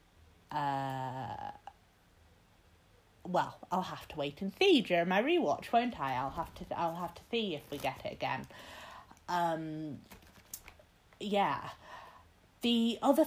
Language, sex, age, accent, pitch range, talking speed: English, female, 30-49, British, 150-220 Hz, 135 wpm